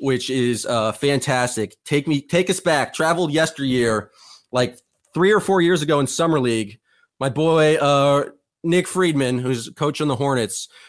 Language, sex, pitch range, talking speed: English, male, 135-160 Hz, 165 wpm